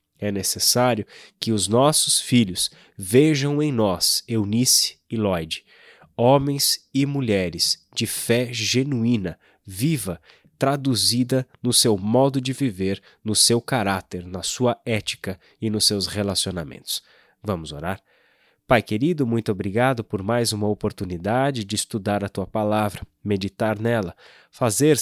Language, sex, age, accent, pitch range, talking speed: Portuguese, male, 20-39, Brazilian, 100-125 Hz, 125 wpm